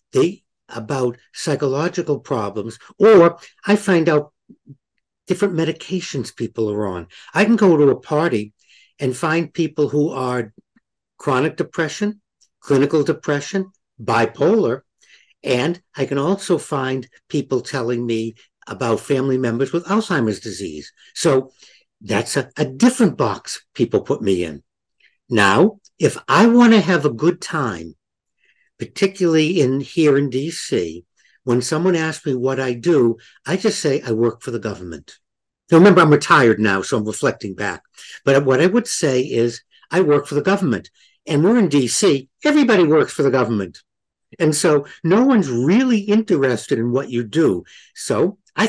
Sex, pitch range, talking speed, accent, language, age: male, 125-180 Hz, 150 wpm, American, English, 60-79